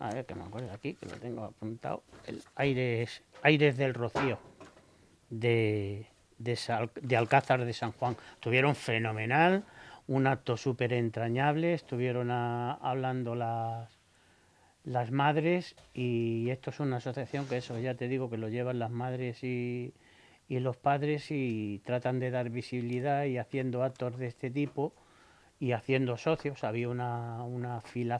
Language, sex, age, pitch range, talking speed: Spanish, male, 40-59, 115-135 Hz, 155 wpm